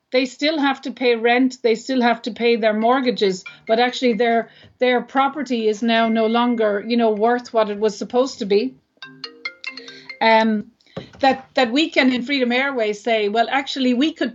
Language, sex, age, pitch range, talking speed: English, female, 40-59, 220-255 Hz, 185 wpm